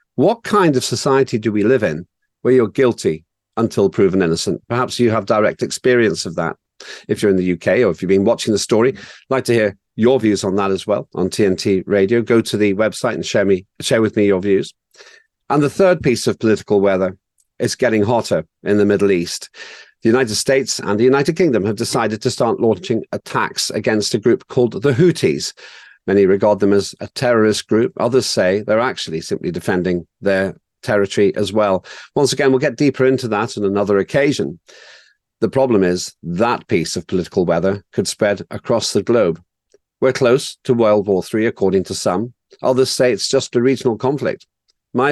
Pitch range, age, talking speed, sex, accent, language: 100-135 Hz, 50-69, 195 wpm, male, British, English